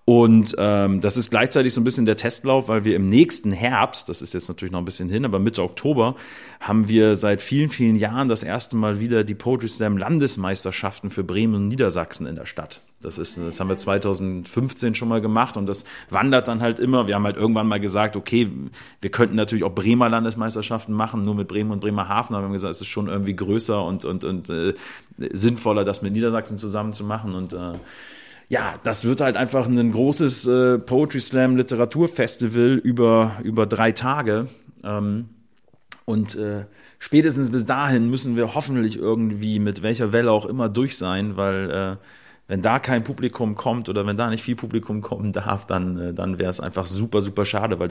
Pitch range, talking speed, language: 100-120 Hz, 200 wpm, German